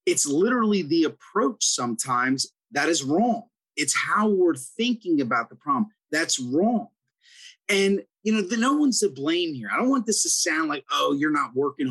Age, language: 30-49, English